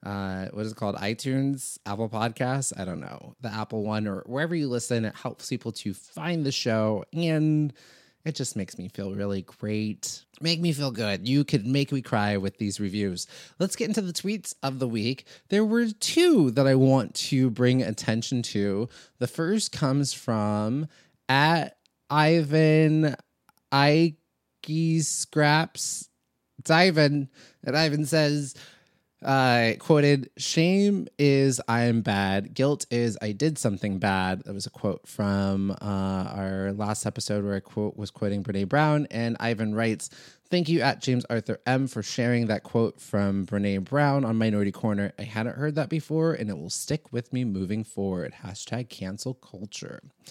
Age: 30-49